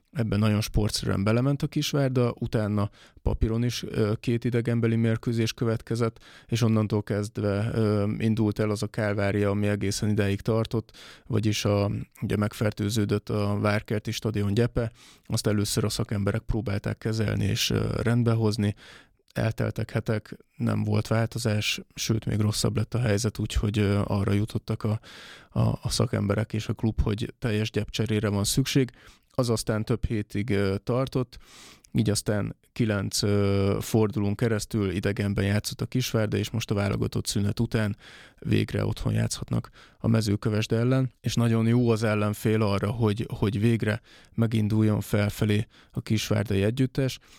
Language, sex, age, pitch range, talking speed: Hungarian, male, 20-39, 105-115 Hz, 135 wpm